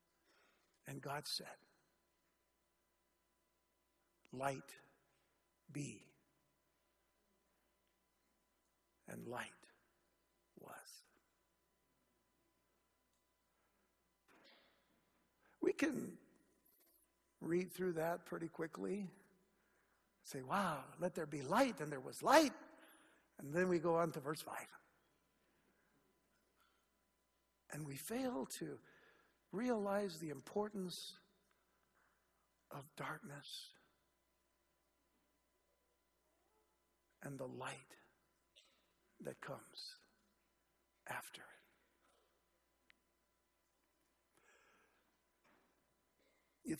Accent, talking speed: American, 65 wpm